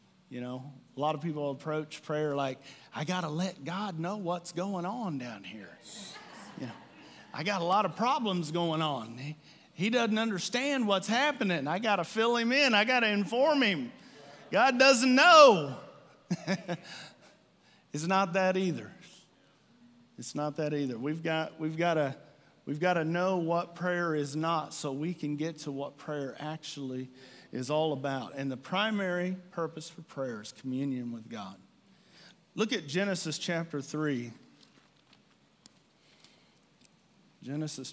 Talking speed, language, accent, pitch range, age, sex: 145 wpm, English, American, 145-185 Hz, 40-59, male